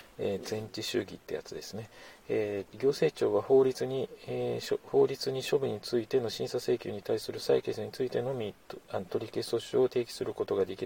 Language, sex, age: Japanese, male, 40-59